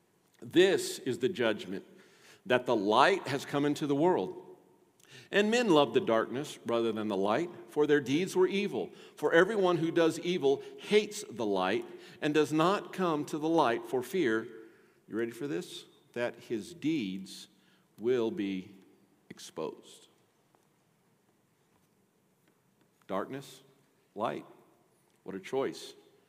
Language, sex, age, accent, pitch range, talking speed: English, male, 50-69, American, 155-215 Hz, 130 wpm